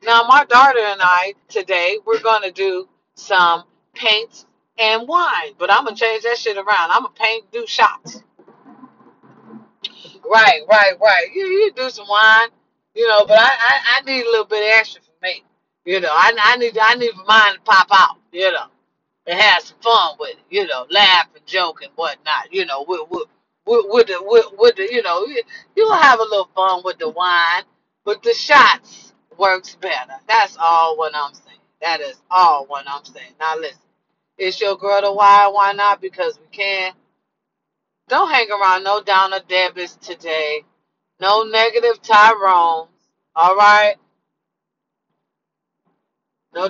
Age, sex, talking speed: 40-59, female, 175 wpm